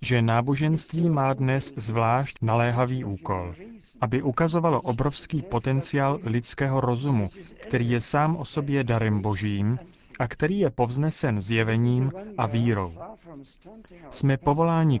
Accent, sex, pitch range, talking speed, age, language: native, male, 115-145 Hz, 115 wpm, 30-49, Czech